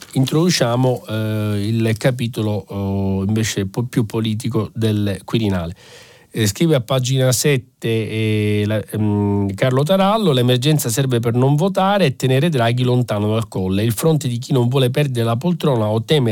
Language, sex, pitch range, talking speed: Italian, male, 105-140 Hz, 160 wpm